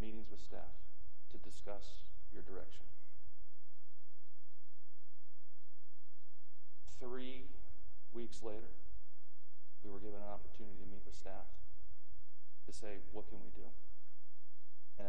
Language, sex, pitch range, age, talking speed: English, male, 85-105 Hz, 40-59, 105 wpm